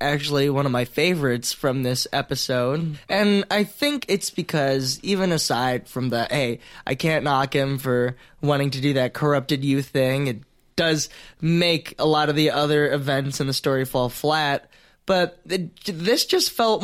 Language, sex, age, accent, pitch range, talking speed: English, male, 20-39, American, 135-175 Hz, 175 wpm